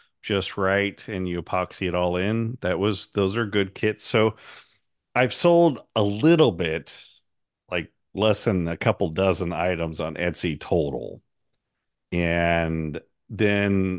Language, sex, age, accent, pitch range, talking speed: English, male, 50-69, American, 85-100 Hz, 135 wpm